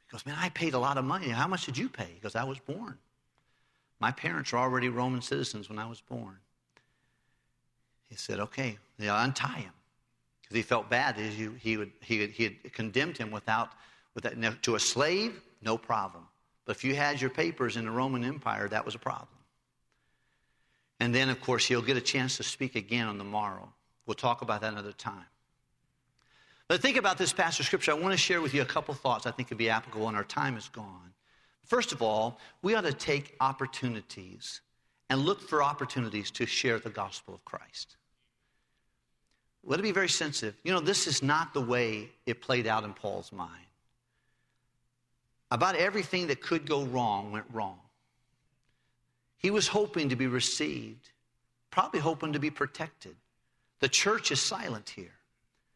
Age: 50-69